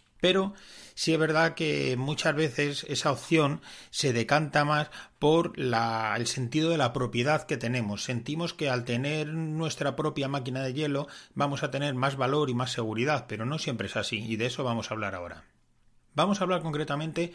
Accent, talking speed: Spanish, 185 wpm